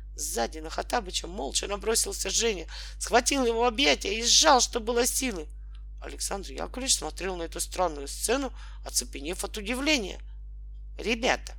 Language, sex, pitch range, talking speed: Russian, male, 180-265 Hz, 130 wpm